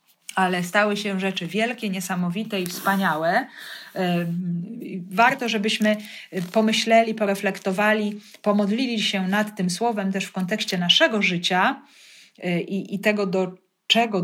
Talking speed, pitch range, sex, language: 115 wpm, 185-220 Hz, female, Polish